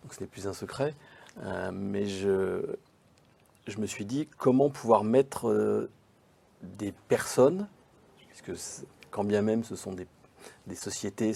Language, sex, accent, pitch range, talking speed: French, male, French, 95-120 Hz, 150 wpm